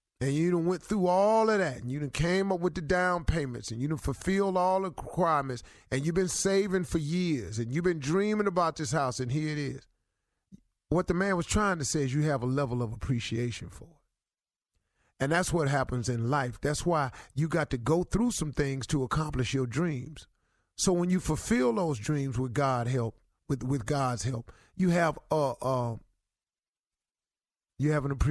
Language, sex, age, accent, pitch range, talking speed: English, male, 40-59, American, 130-170 Hz, 210 wpm